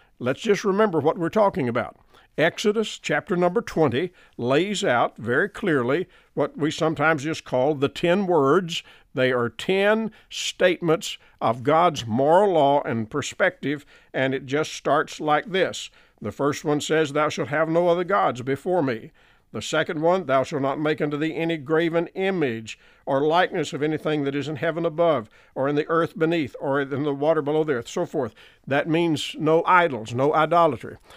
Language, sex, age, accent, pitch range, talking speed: English, male, 50-69, American, 135-170 Hz, 175 wpm